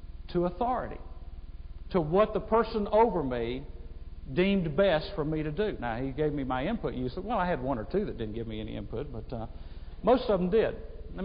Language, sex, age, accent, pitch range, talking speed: English, male, 50-69, American, 115-155 Hz, 220 wpm